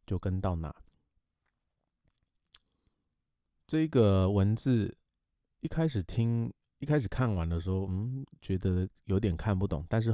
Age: 20-39